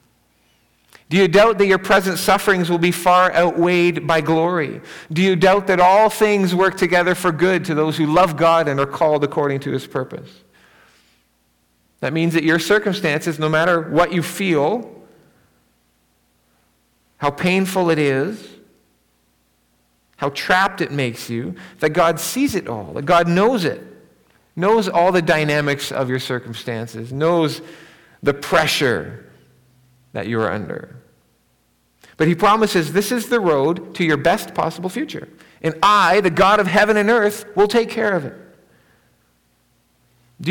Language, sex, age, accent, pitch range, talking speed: English, male, 40-59, American, 135-190 Hz, 155 wpm